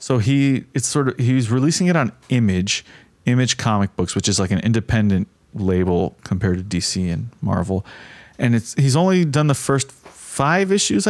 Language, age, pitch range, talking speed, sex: English, 30-49, 100-135 Hz, 180 wpm, male